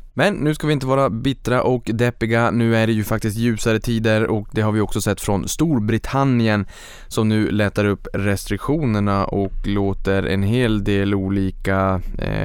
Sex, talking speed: male, 170 wpm